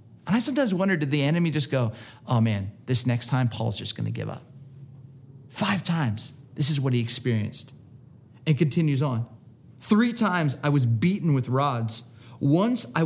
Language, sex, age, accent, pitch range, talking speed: English, male, 30-49, American, 135-205 Hz, 175 wpm